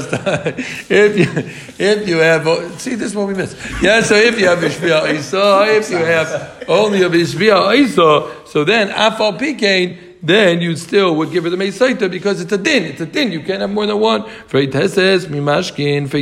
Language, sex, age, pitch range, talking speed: English, male, 50-69, 145-195 Hz, 165 wpm